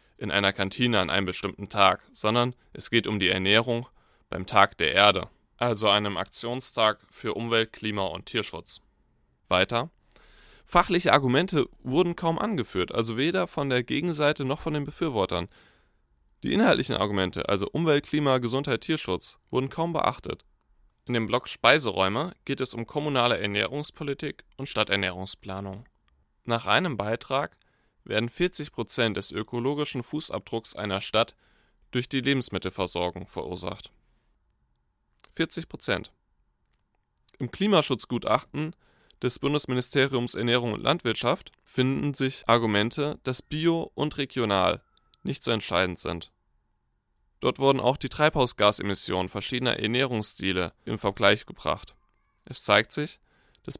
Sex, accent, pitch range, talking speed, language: male, German, 100-135 Hz, 120 wpm, German